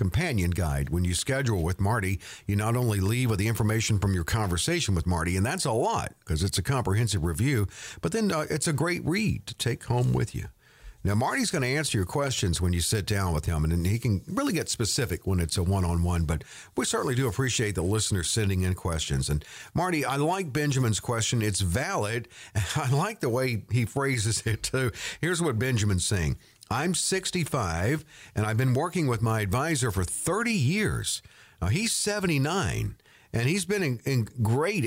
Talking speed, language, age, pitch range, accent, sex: 200 wpm, English, 50-69, 100-150 Hz, American, male